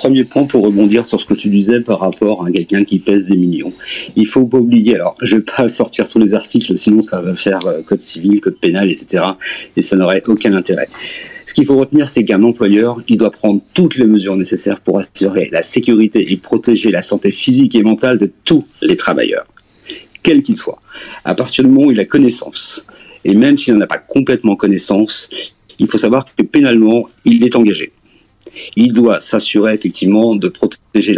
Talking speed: 205 wpm